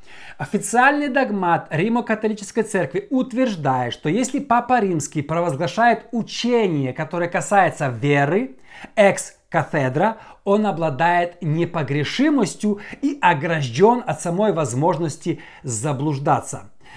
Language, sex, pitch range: Russian, male, 155-225 Hz